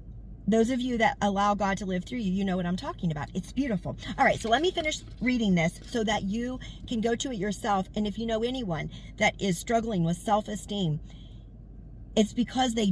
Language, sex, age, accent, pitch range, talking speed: English, female, 40-59, American, 175-230 Hz, 220 wpm